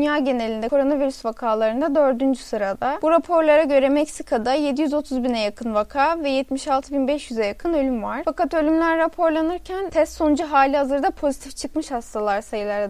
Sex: female